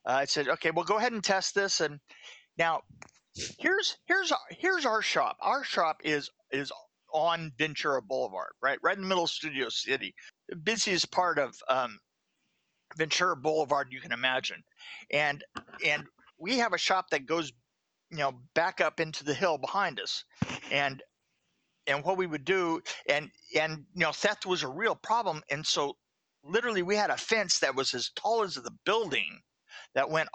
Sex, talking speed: male, 180 wpm